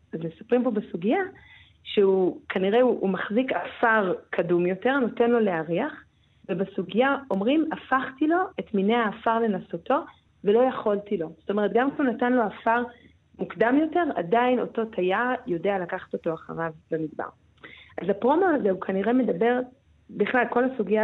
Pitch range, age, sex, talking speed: 190-250 Hz, 30-49, female, 150 wpm